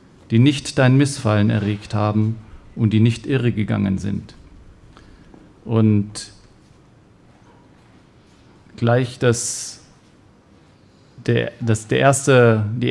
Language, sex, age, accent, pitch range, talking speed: German, male, 40-59, German, 110-125 Hz, 95 wpm